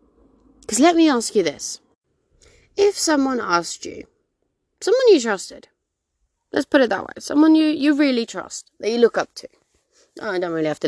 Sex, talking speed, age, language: female, 190 wpm, 20-39, English